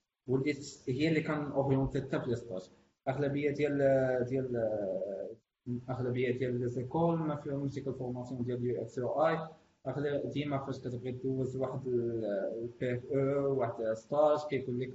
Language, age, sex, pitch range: Arabic, 20-39, male, 125-150 Hz